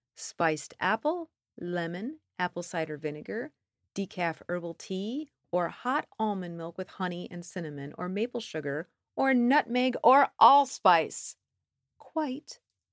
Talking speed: 115 wpm